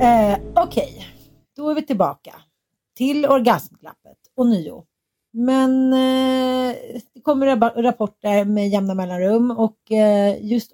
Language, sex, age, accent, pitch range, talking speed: Swedish, female, 40-59, native, 185-230 Hz, 125 wpm